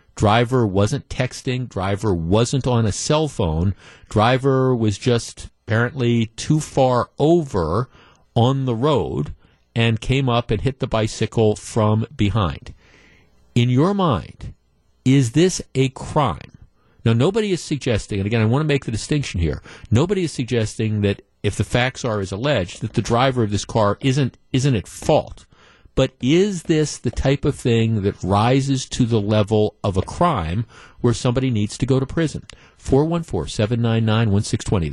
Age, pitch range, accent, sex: 50-69, 105-130 Hz, American, male